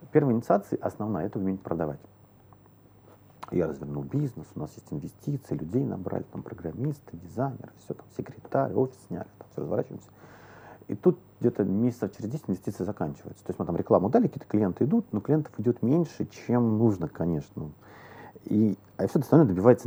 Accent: native